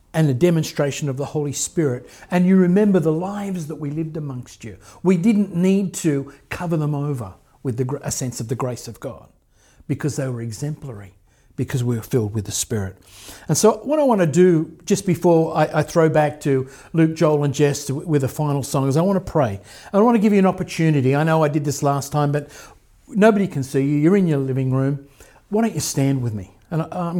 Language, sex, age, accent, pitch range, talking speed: English, male, 50-69, Australian, 125-160 Hz, 225 wpm